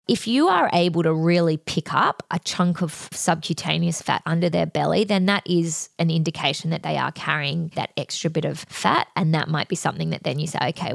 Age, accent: 20-39, Australian